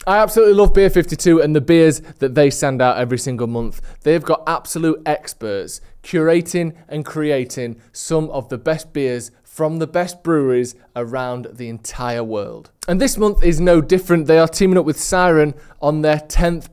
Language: English